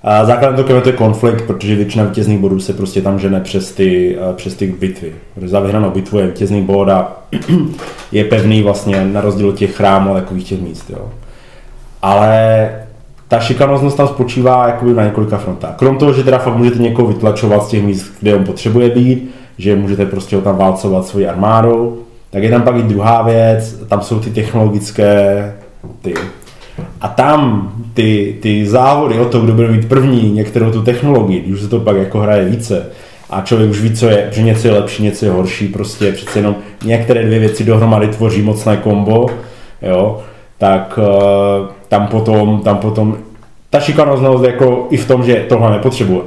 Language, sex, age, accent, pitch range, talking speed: Czech, male, 30-49, native, 100-120 Hz, 175 wpm